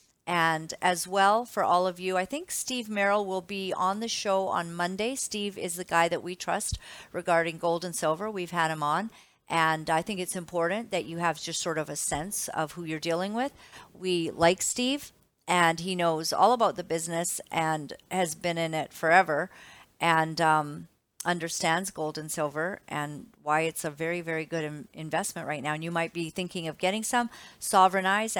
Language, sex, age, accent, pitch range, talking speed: English, female, 50-69, American, 160-185 Hz, 195 wpm